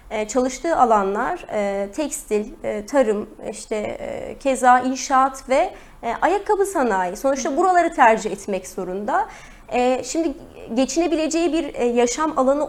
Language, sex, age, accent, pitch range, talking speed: Turkish, female, 30-49, native, 245-325 Hz, 95 wpm